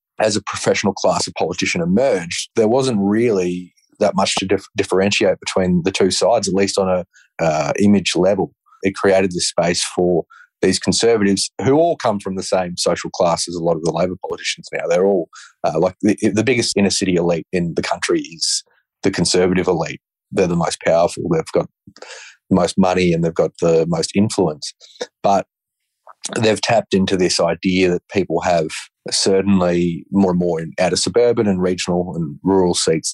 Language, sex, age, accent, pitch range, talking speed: English, male, 30-49, Australian, 90-100 Hz, 185 wpm